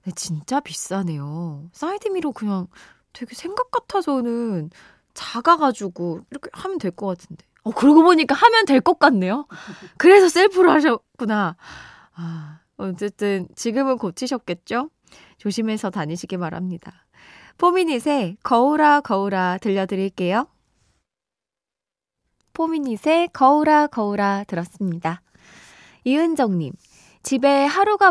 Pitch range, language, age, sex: 190-300 Hz, Korean, 20-39, female